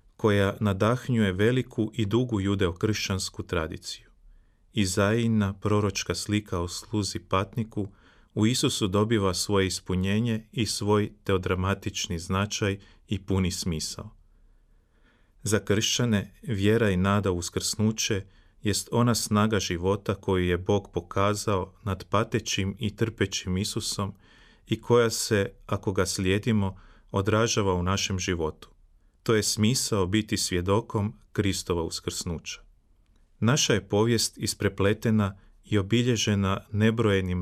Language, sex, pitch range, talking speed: Croatian, male, 95-110 Hz, 110 wpm